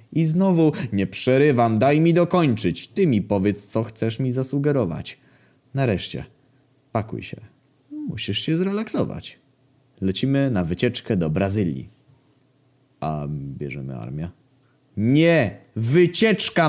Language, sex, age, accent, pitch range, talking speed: Polish, male, 20-39, native, 95-135 Hz, 110 wpm